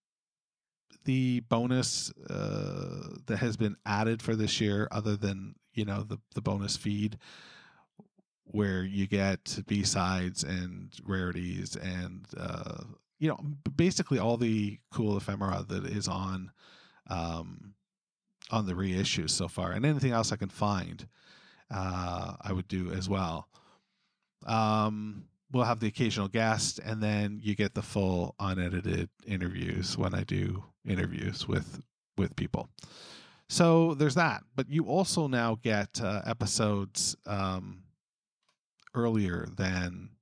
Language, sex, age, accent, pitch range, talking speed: English, male, 40-59, American, 95-125 Hz, 130 wpm